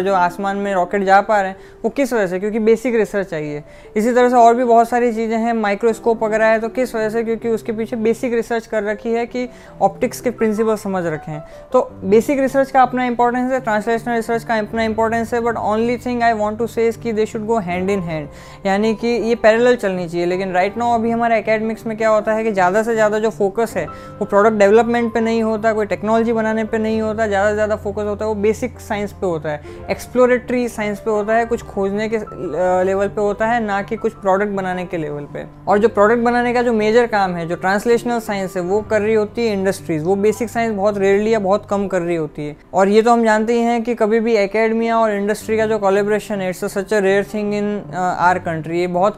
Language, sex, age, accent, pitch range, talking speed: Hindi, female, 20-39, native, 195-230 Hz, 215 wpm